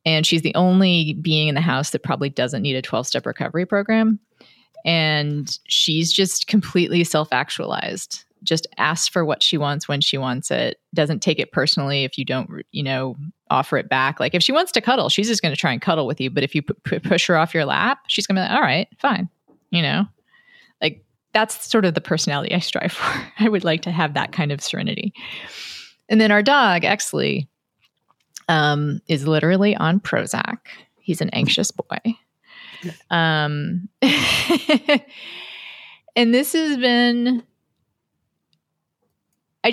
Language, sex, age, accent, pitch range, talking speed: English, female, 30-49, American, 155-210 Hz, 170 wpm